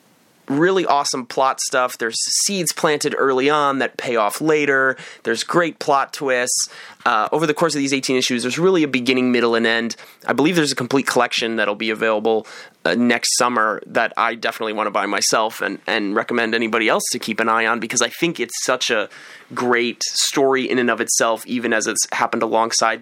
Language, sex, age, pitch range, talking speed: English, male, 30-49, 115-150 Hz, 205 wpm